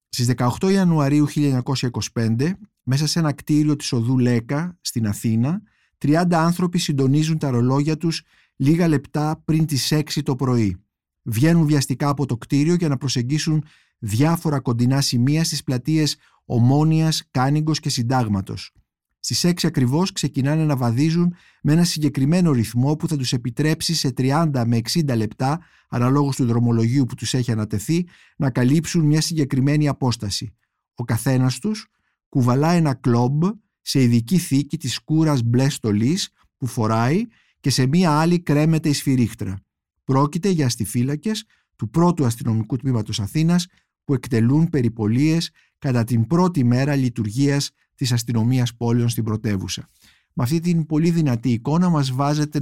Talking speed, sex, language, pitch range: 145 wpm, male, Greek, 120-155 Hz